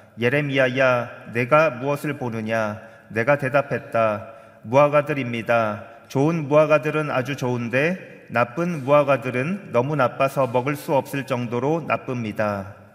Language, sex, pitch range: Korean, male, 115-145 Hz